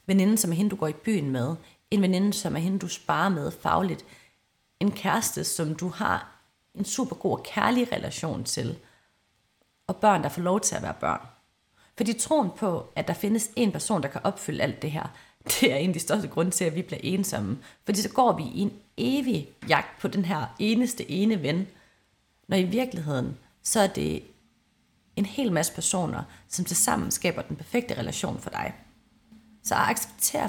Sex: female